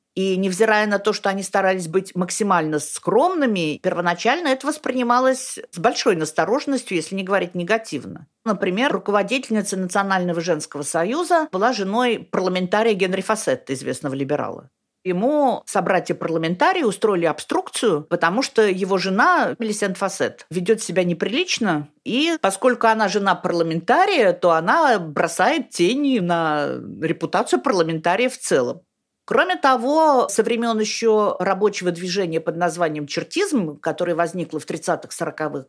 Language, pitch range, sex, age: Russian, 170-235 Hz, female, 50-69